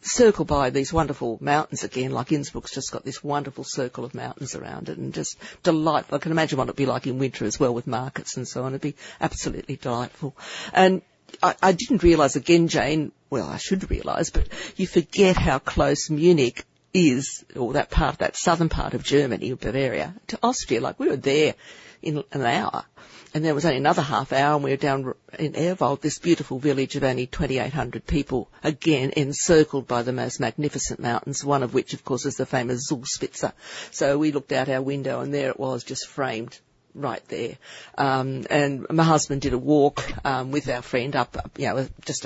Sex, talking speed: female, 200 wpm